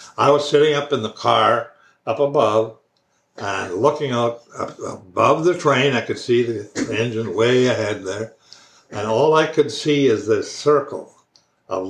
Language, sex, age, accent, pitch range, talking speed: English, male, 60-79, American, 115-140 Hz, 165 wpm